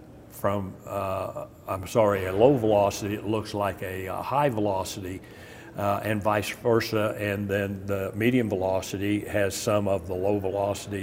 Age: 60-79